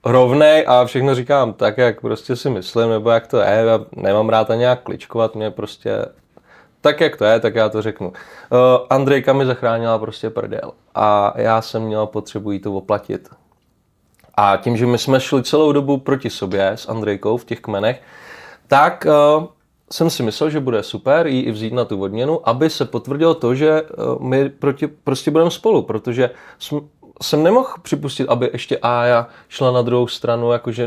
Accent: native